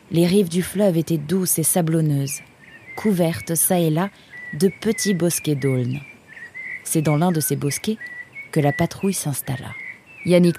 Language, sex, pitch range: French, female, 145-170 Hz